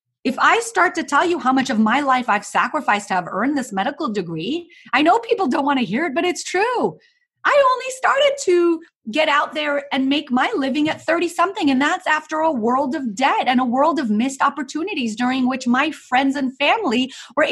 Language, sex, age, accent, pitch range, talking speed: English, female, 30-49, American, 235-320 Hz, 215 wpm